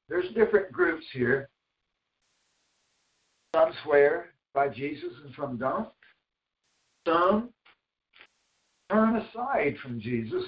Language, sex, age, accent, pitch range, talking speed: English, male, 60-79, American, 135-185 Hz, 90 wpm